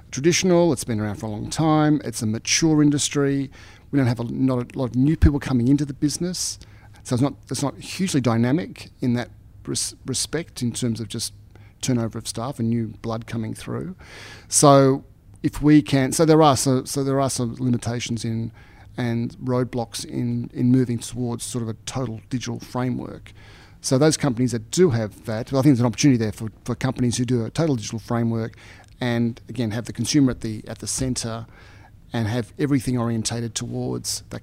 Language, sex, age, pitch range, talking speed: English, male, 40-59, 110-130 Hz, 195 wpm